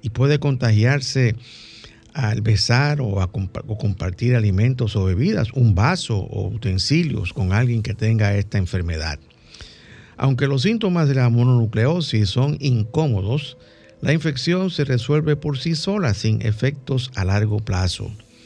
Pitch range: 110-145 Hz